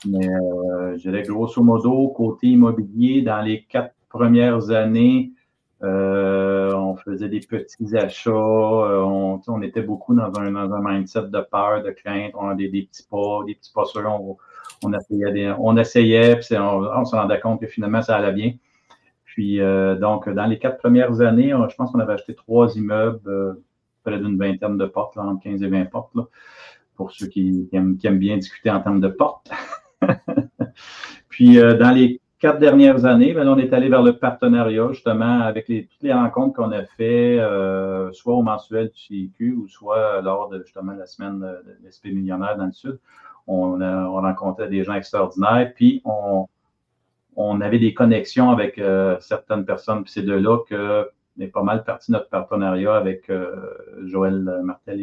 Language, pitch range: French, 95-120 Hz